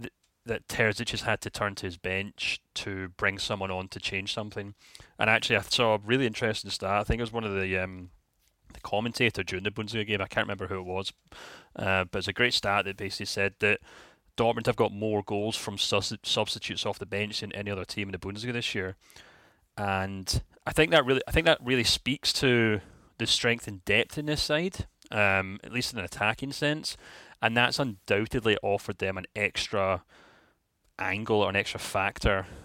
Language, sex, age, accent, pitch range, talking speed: English, male, 30-49, British, 95-115 Hz, 205 wpm